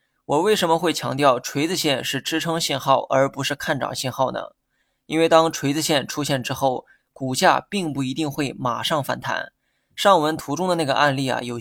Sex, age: male, 20-39